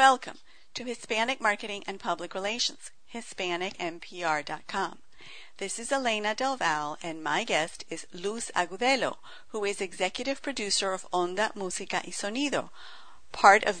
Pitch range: 180-235 Hz